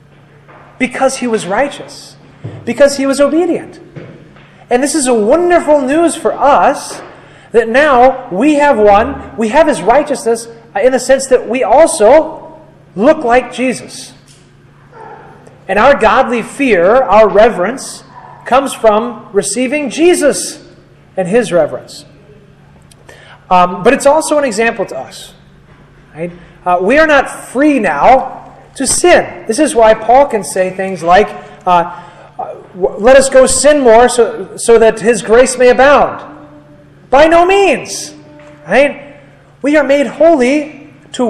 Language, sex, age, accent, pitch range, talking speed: English, male, 30-49, American, 200-280 Hz, 135 wpm